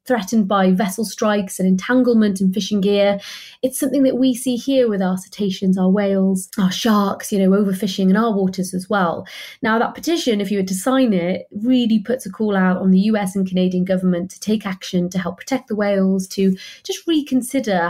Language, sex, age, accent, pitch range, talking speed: English, female, 30-49, British, 195-240 Hz, 205 wpm